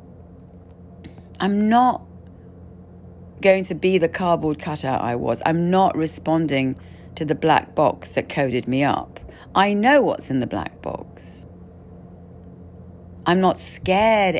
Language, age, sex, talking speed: English, 40-59, female, 130 wpm